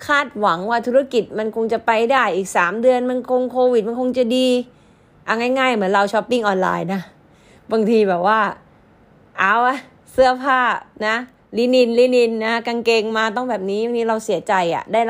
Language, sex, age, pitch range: Thai, female, 20-39, 190-245 Hz